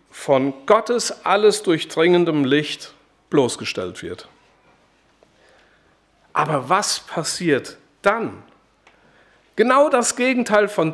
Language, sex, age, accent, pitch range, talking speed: German, male, 50-69, German, 175-235 Hz, 80 wpm